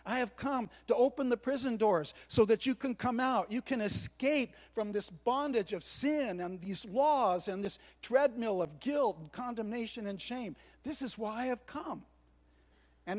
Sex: male